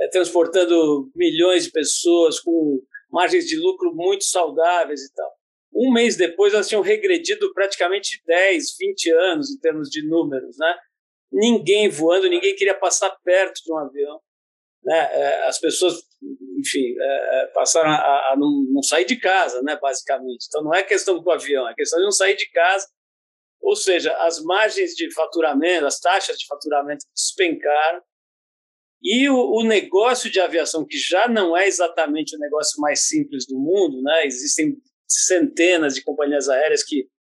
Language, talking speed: Portuguese, 155 wpm